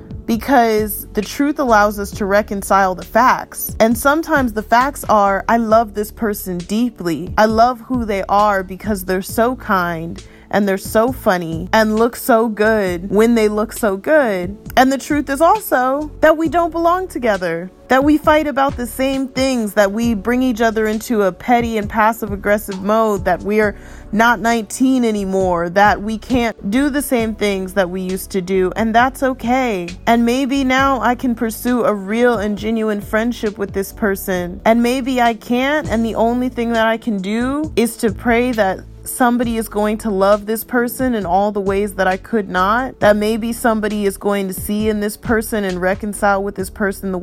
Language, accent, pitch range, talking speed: English, American, 200-240 Hz, 195 wpm